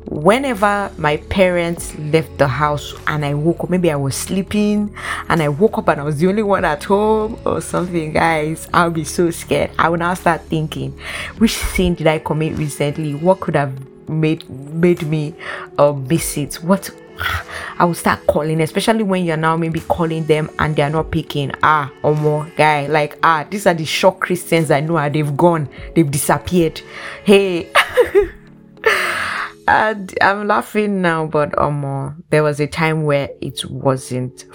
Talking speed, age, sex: 175 wpm, 20-39, female